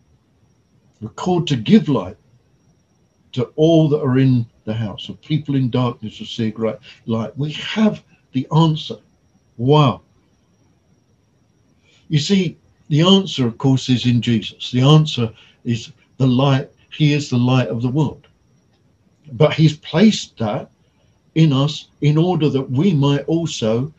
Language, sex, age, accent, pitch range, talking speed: English, male, 60-79, British, 120-155 Hz, 150 wpm